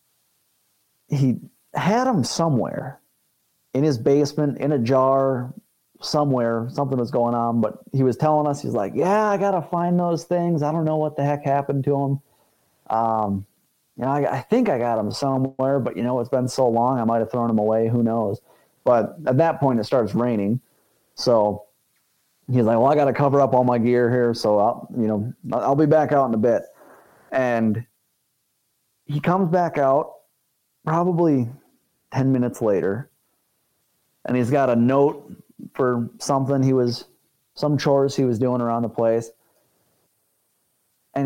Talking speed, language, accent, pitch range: 175 wpm, English, American, 120-155 Hz